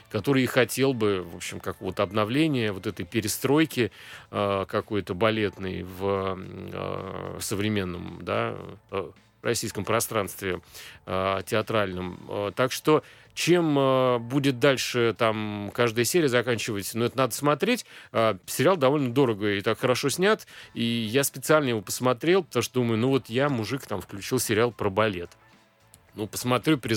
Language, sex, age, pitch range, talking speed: Russian, male, 30-49, 100-130 Hz, 145 wpm